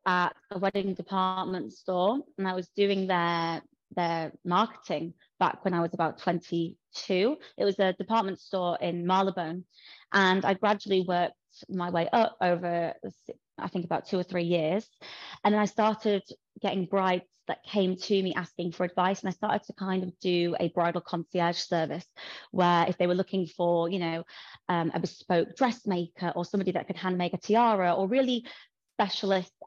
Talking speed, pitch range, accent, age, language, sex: 175 wpm, 175-195 Hz, British, 20-39, English, female